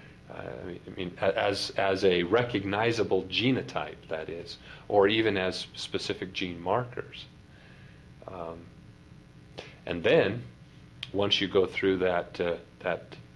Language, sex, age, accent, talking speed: English, male, 40-59, American, 120 wpm